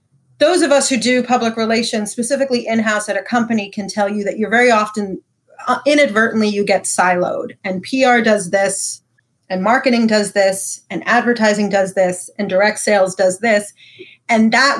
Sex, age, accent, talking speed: female, 30-49, American, 175 wpm